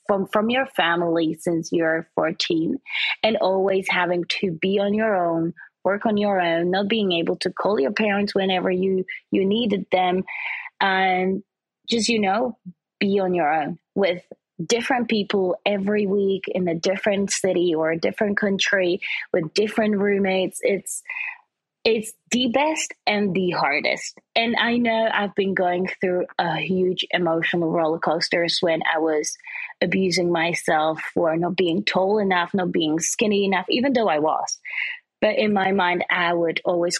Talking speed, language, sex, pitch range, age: 160 wpm, English, female, 175-225 Hz, 20-39